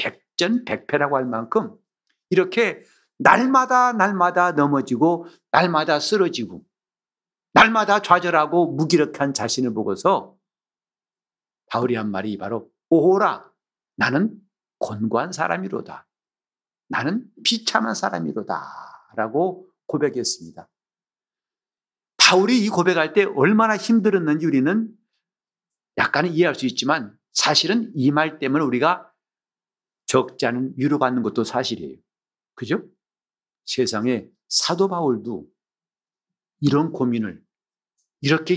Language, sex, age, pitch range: Korean, male, 50-69, 135-205 Hz